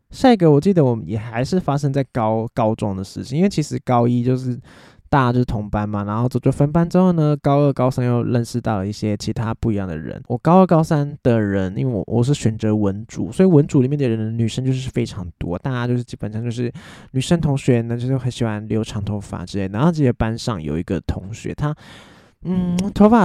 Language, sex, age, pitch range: Chinese, male, 20-39, 115-155 Hz